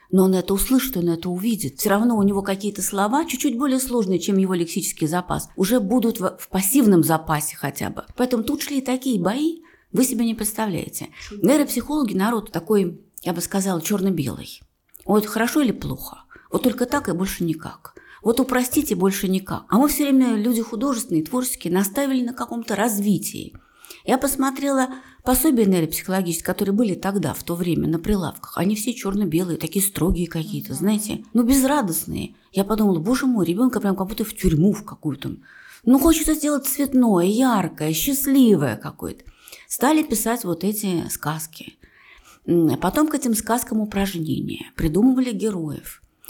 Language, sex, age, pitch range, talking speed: Russian, female, 40-59, 180-255 Hz, 160 wpm